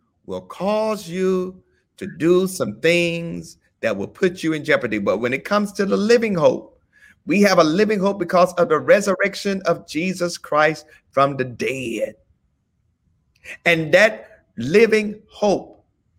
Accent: American